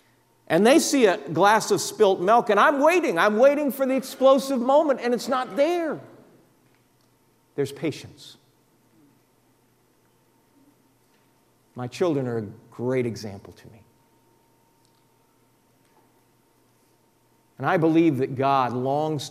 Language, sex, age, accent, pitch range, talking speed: English, male, 50-69, American, 120-165 Hz, 115 wpm